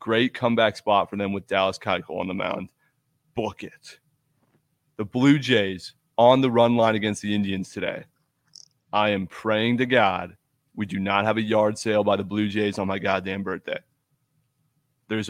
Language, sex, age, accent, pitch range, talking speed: English, male, 20-39, American, 105-135 Hz, 175 wpm